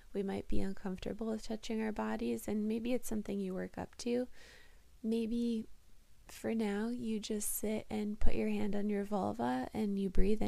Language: English